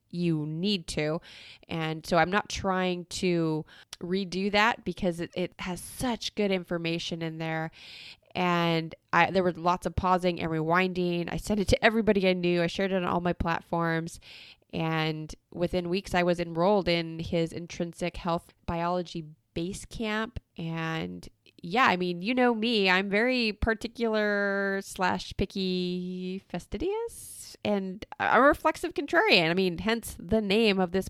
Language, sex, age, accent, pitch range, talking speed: English, female, 20-39, American, 170-200 Hz, 150 wpm